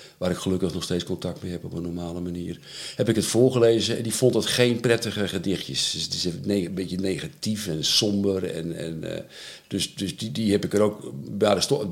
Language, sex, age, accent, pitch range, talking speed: Dutch, male, 50-69, Dutch, 95-130 Hz, 210 wpm